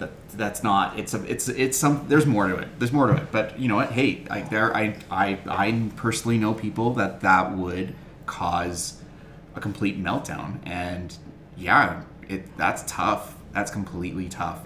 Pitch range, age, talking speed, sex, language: 90-110 Hz, 30-49, 180 wpm, male, English